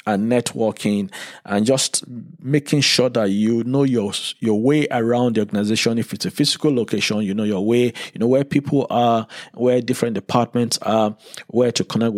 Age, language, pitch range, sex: 50-69, English, 105-135 Hz, male